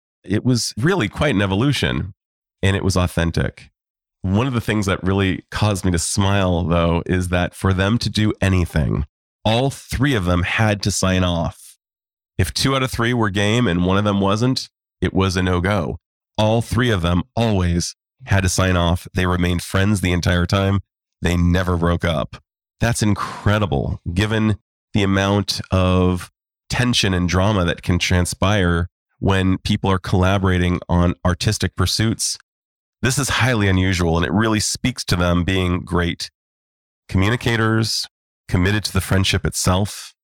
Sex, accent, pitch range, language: male, American, 90-105 Hz, English